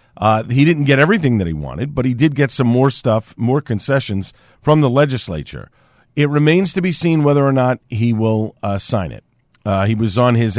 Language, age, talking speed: English, 50-69, 215 wpm